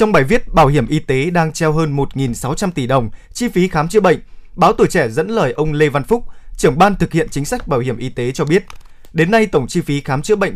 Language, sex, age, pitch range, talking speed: Vietnamese, male, 20-39, 130-185 Hz, 265 wpm